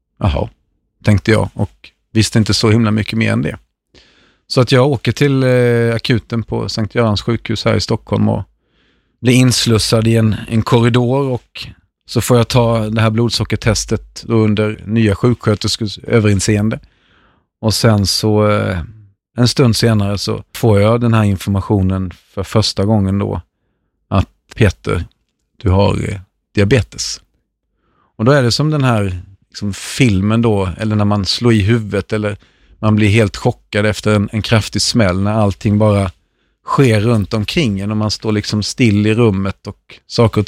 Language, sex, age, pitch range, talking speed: Swedish, male, 30-49, 100-115 Hz, 155 wpm